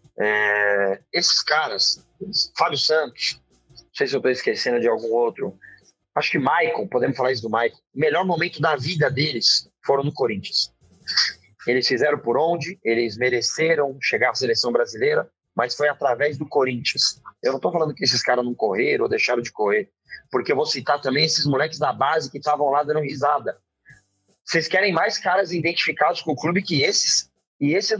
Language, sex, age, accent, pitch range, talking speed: Portuguese, male, 30-49, Brazilian, 135-190 Hz, 180 wpm